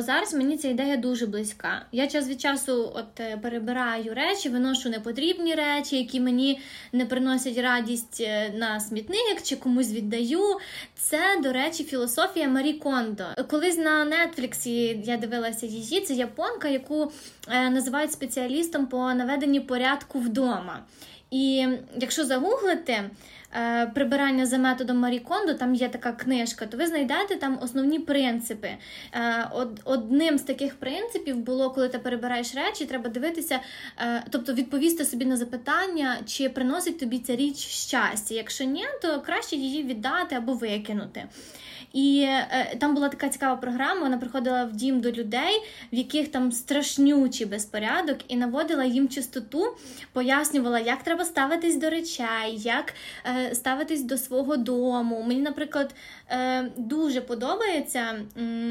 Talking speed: 135 wpm